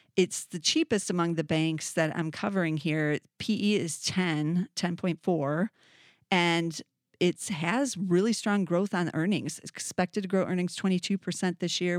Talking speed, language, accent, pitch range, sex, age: 155 wpm, English, American, 165-195 Hz, female, 40-59